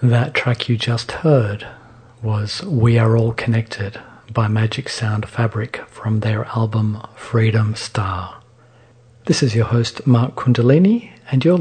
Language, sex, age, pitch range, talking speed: English, male, 40-59, 110-125 Hz, 140 wpm